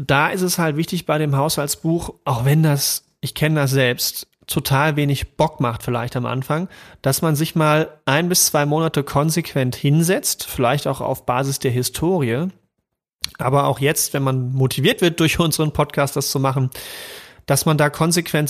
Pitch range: 130-155 Hz